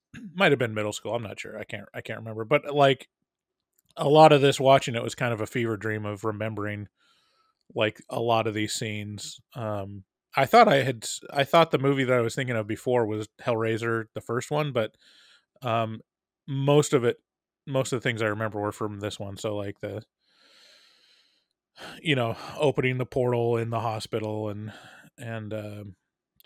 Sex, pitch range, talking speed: male, 110-135 Hz, 190 wpm